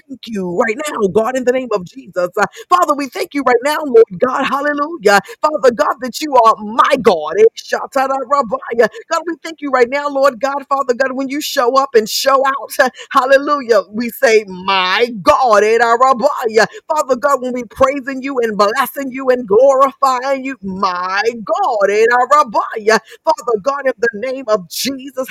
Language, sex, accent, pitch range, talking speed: English, female, American, 235-275 Hz, 180 wpm